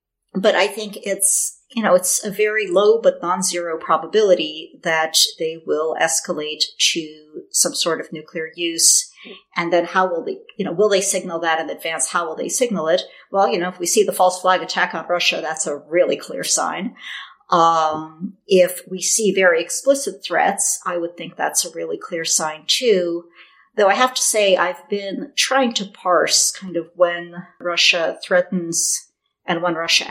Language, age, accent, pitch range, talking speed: English, 50-69, American, 165-210 Hz, 185 wpm